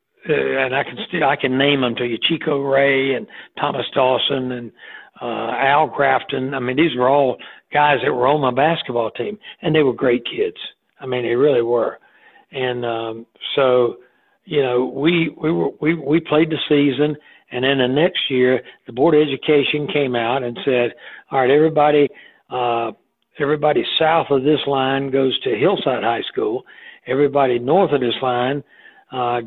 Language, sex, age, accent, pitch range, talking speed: English, male, 60-79, American, 125-155 Hz, 180 wpm